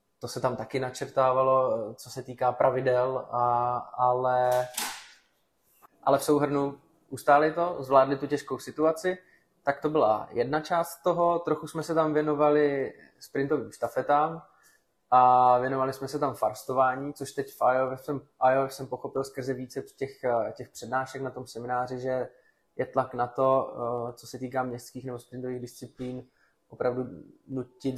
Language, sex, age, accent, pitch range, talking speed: Czech, male, 20-39, native, 125-140 Hz, 145 wpm